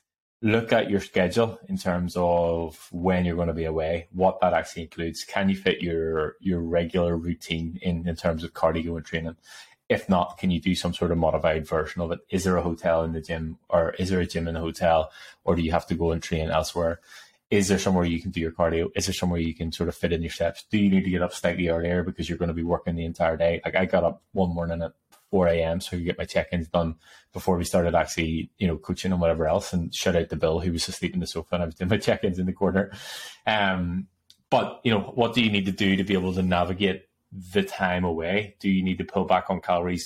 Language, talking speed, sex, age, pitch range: English, 260 wpm, male, 20-39, 85-95 Hz